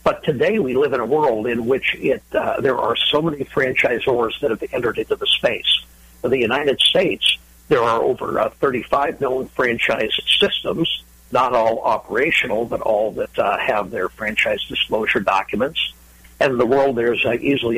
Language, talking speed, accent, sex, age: English, 180 wpm, American, male, 60-79